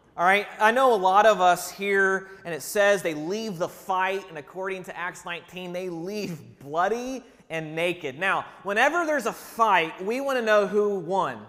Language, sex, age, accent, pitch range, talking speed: English, male, 30-49, American, 145-190 Hz, 190 wpm